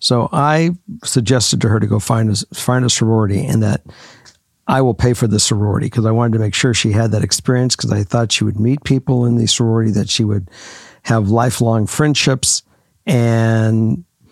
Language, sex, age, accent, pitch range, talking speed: English, male, 60-79, American, 110-135 Hz, 195 wpm